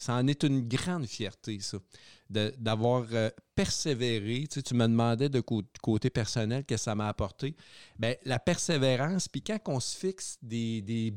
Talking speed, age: 175 wpm, 50-69